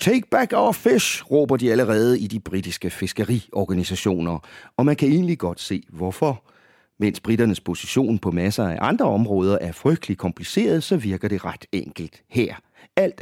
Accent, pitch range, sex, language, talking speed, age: Danish, 90-120 Hz, male, English, 165 wpm, 40-59